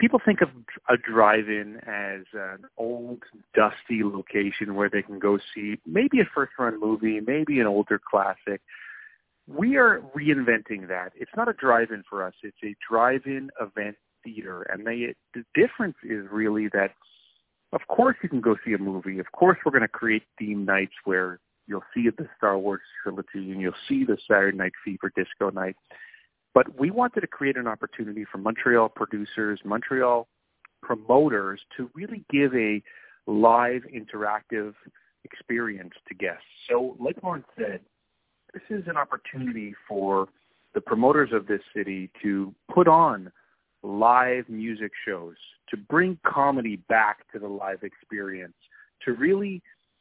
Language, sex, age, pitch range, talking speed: English, male, 40-59, 105-140 Hz, 150 wpm